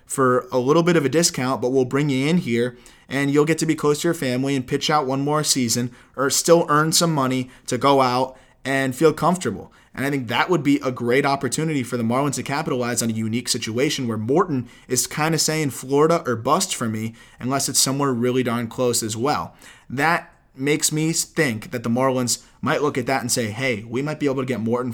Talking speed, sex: 235 wpm, male